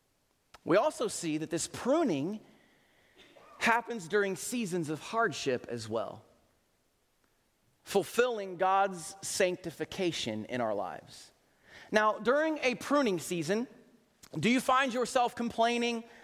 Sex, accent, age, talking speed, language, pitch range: male, American, 30-49, 105 wpm, English, 225-280 Hz